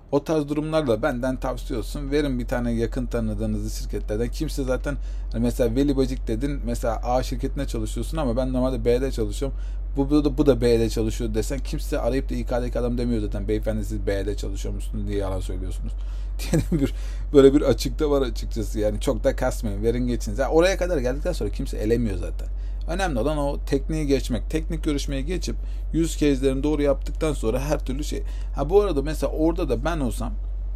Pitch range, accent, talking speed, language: 110-140 Hz, native, 180 wpm, Turkish